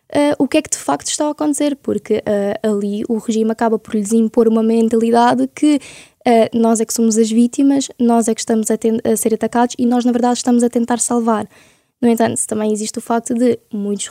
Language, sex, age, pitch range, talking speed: Portuguese, female, 10-29, 225-255 Hz, 230 wpm